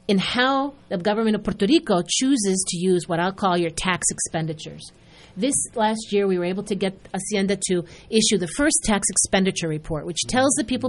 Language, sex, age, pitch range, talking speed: Spanish, female, 40-59, 170-230 Hz, 200 wpm